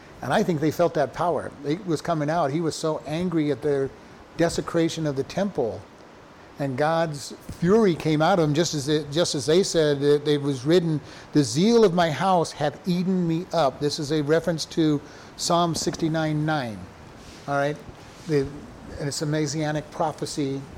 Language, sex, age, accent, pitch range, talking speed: English, male, 50-69, American, 145-180 Hz, 180 wpm